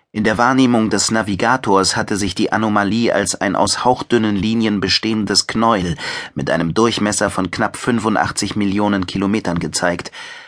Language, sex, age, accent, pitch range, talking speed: German, male, 30-49, German, 95-115 Hz, 145 wpm